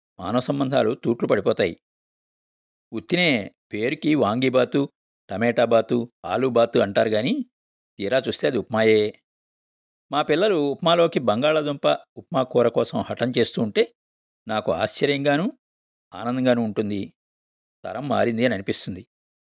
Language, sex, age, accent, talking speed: Telugu, male, 50-69, native, 110 wpm